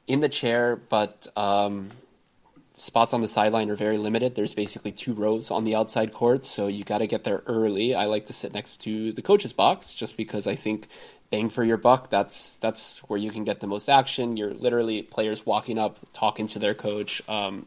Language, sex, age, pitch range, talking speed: English, male, 20-39, 105-125 Hz, 215 wpm